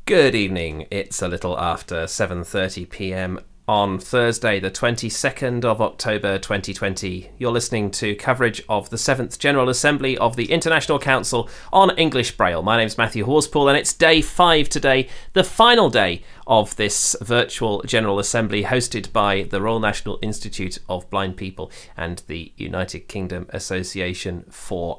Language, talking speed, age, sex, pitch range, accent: English, 150 wpm, 30-49, male, 100-140 Hz, British